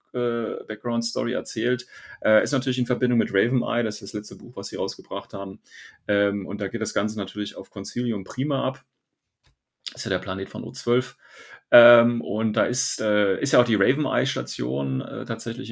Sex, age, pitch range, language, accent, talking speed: male, 30-49, 100-120 Hz, German, German, 175 wpm